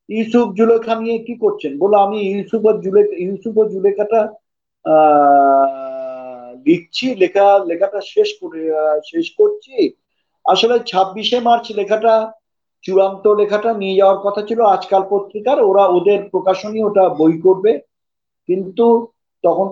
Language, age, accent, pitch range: Bengali, 50-69, native, 170-210 Hz